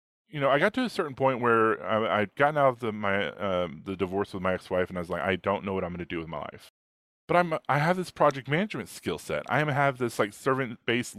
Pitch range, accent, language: 100-135 Hz, American, English